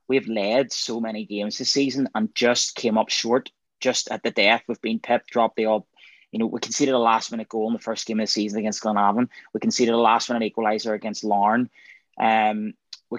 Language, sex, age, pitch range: English, male, 20-39, 110-130 Hz